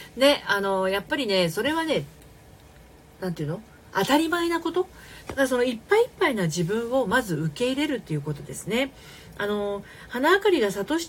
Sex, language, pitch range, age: female, Japanese, 165-265 Hz, 40-59